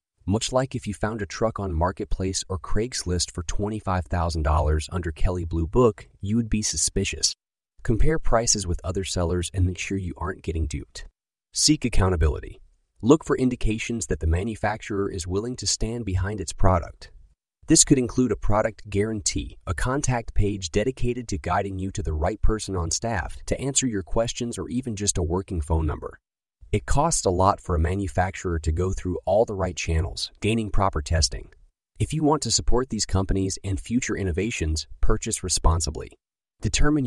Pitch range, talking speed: 85-110 Hz, 175 wpm